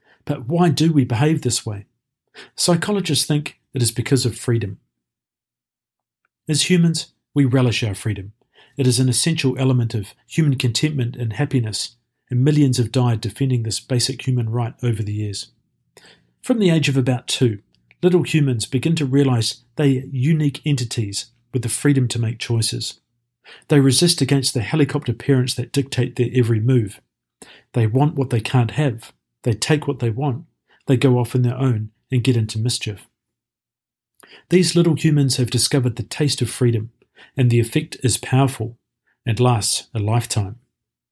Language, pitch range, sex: English, 115-145 Hz, male